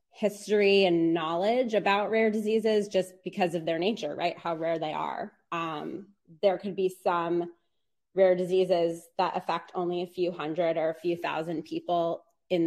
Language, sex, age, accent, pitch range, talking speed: English, female, 20-39, American, 170-200 Hz, 165 wpm